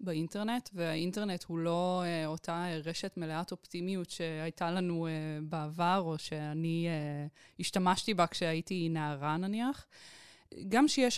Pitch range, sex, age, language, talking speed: 175-225 Hz, female, 20-39, Hebrew, 125 wpm